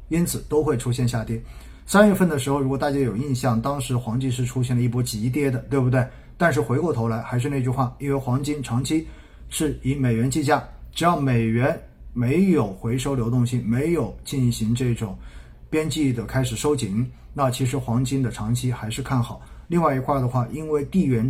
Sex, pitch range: male, 115-145 Hz